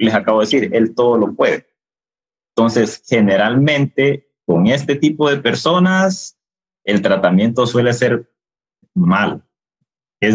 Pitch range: 105-145 Hz